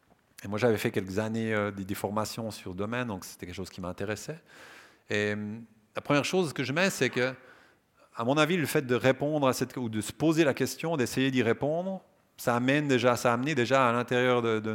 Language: French